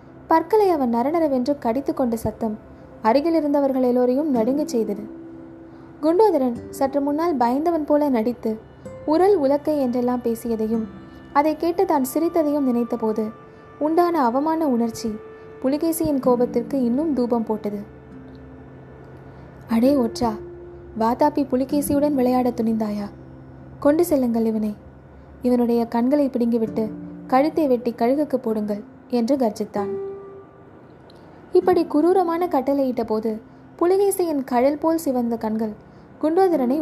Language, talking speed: Tamil, 95 wpm